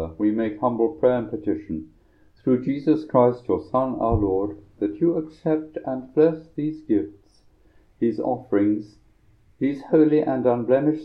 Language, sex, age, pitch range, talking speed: English, male, 60-79, 100-135 Hz, 140 wpm